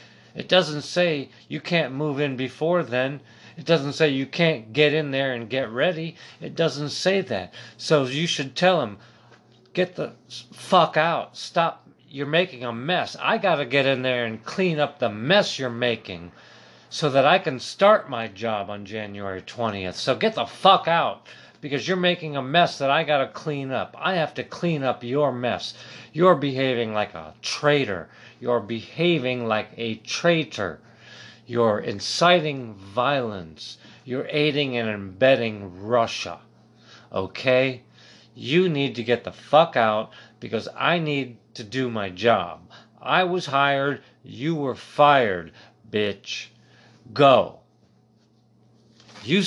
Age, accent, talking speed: 50-69, American, 155 wpm